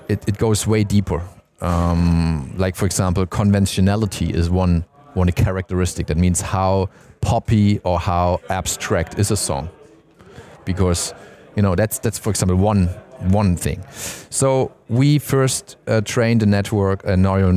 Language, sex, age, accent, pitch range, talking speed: Swedish, male, 30-49, German, 95-115 Hz, 145 wpm